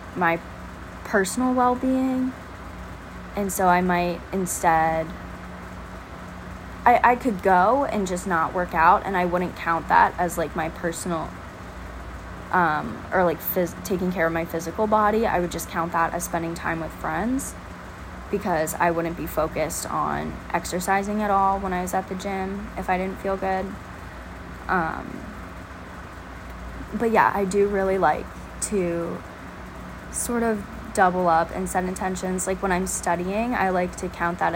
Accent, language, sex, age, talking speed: American, English, female, 20-39, 155 wpm